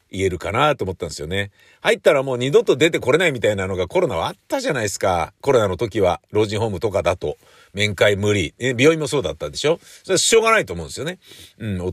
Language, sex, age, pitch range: Japanese, male, 50-69, 85-125 Hz